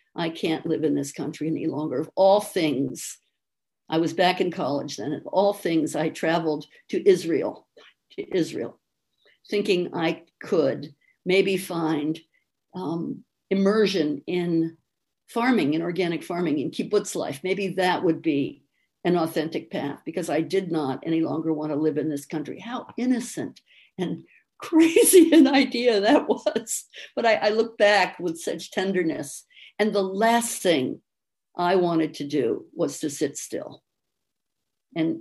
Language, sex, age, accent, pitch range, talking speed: English, female, 60-79, American, 160-210 Hz, 150 wpm